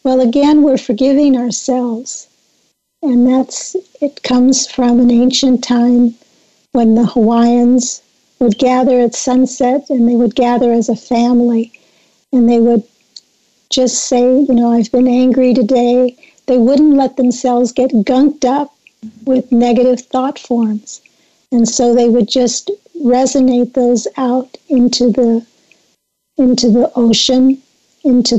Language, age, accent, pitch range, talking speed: English, 50-69, American, 240-260 Hz, 130 wpm